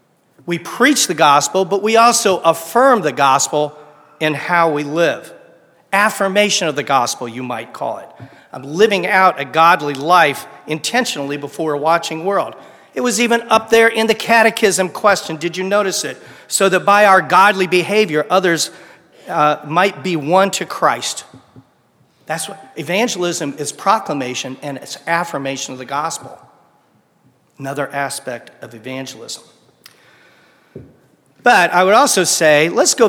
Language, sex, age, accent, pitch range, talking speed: English, male, 40-59, American, 145-190 Hz, 145 wpm